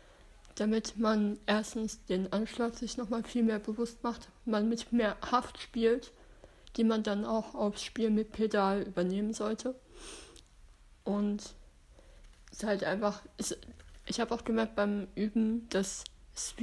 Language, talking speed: German, 145 wpm